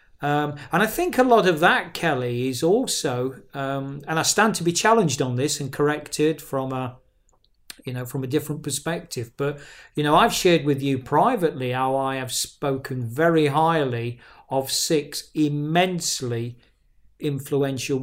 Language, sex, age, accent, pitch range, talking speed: English, male, 40-59, British, 125-160 Hz, 160 wpm